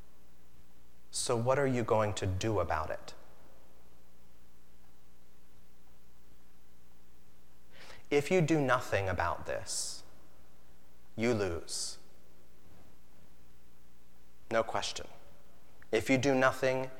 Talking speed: 80 wpm